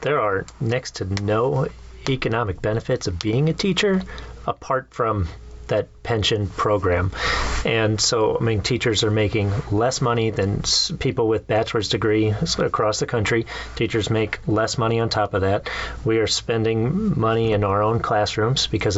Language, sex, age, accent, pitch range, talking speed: English, male, 30-49, American, 105-125 Hz, 160 wpm